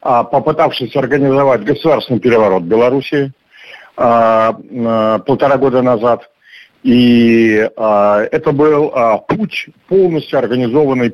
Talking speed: 90 wpm